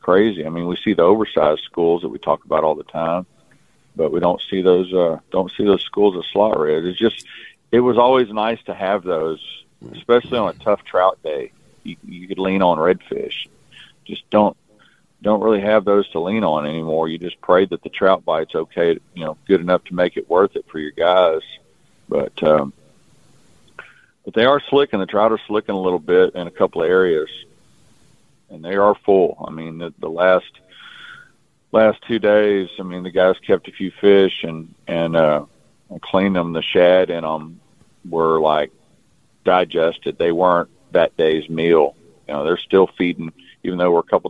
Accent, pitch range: American, 85-105 Hz